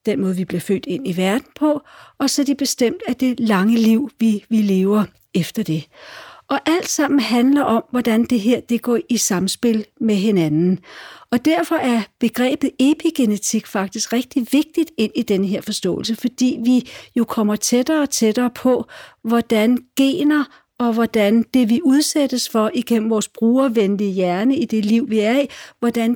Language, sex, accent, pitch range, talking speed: Danish, female, native, 215-270 Hz, 175 wpm